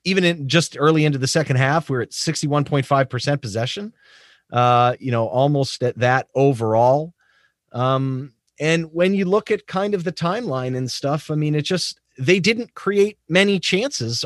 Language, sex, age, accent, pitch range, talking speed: English, male, 30-49, American, 115-165 Hz, 170 wpm